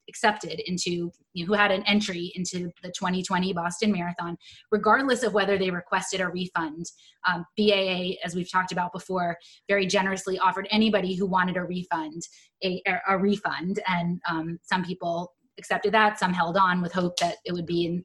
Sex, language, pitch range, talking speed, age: female, English, 180-210 Hz, 175 wpm, 20-39